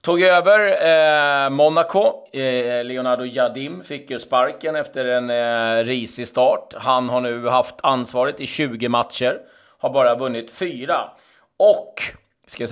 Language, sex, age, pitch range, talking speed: Swedish, male, 30-49, 115-145 Hz, 140 wpm